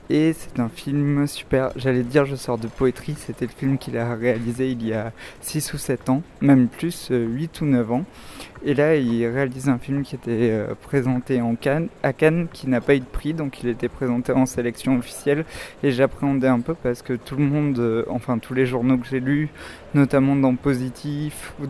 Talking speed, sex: 210 wpm, male